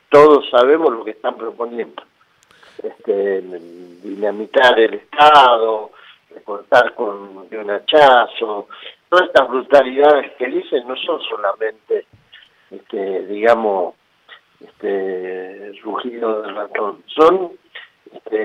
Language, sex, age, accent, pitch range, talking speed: Spanish, male, 50-69, Argentinian, 130-195 Hz, 105 wpm